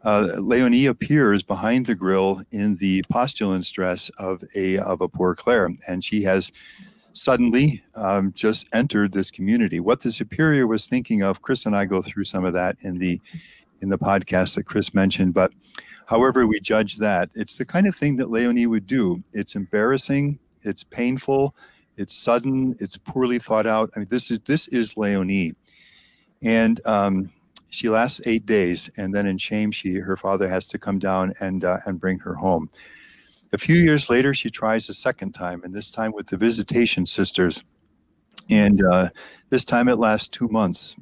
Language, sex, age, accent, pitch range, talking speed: English, male, 50-69, American, 95-120 Hz, 185 wpm